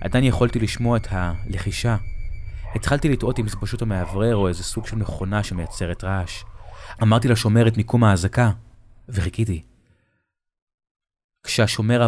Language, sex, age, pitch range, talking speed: Hebrew, male, 20-39, 95-115 Hz, 130 wpm